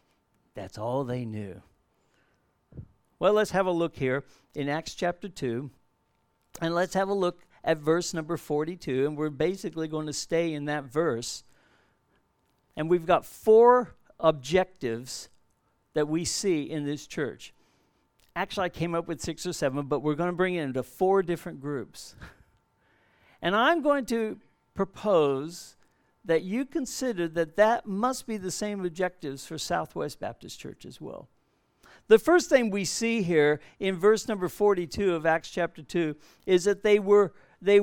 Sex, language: male, English